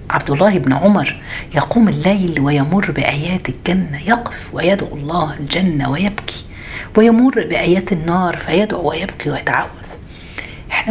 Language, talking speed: Arabic, 115 wpm